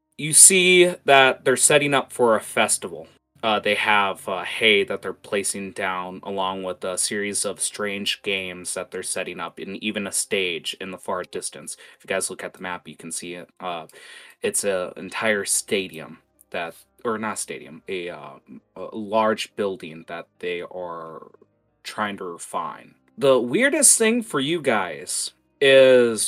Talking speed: 170 wpm